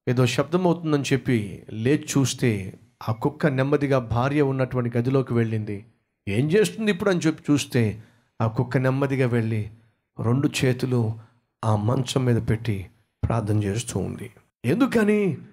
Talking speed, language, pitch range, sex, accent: 130 wpm, Telugu, 115-140 Hz, male, native